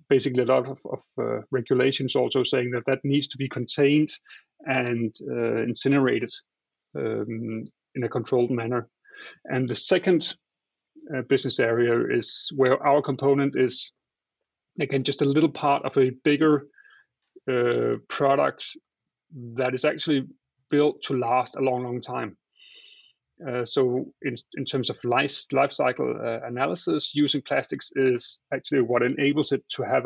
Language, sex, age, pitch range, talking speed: English, male, 30-49, 130-145 Hz, 150 wpm